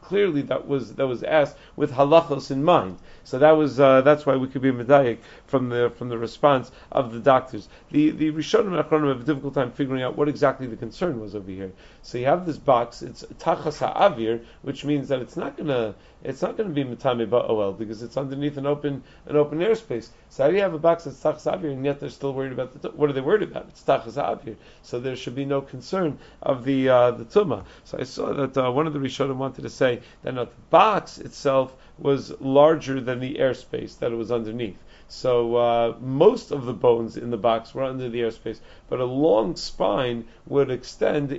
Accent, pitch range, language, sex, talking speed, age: American, 120-150 Hz, English, male, 230 wpm, 40-59